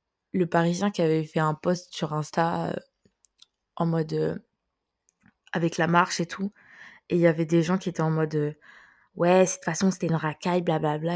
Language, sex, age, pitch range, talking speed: French, female, 20-39, 170-195 Hz, 210 wpm